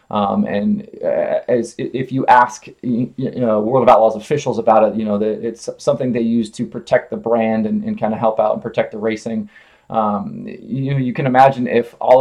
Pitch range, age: 110-130 Hz, 20-39